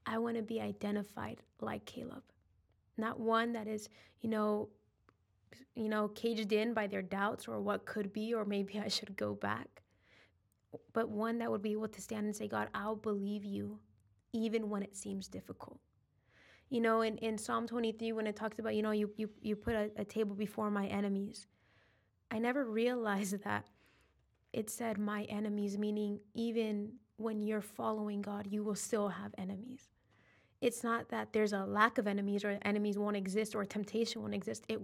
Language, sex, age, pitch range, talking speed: English, female, 20-39, 195-225 Hz, 185 wpm